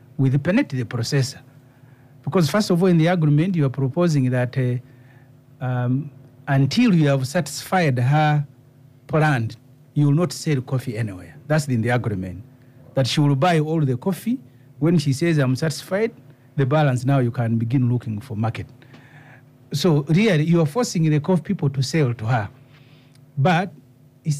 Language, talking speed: English, 165 wpm